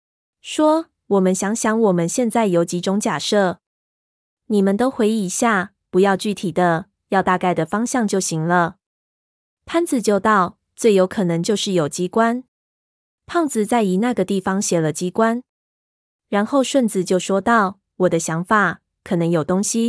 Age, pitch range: 20-39, 175-220 Hz